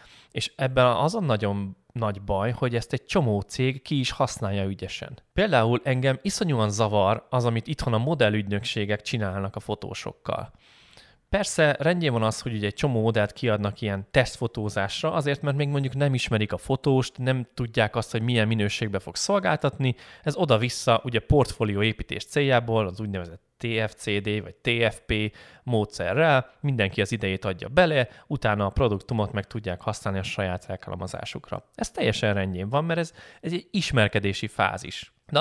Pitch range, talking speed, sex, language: 100-130 Hz, 155 wpm, male, Hungarian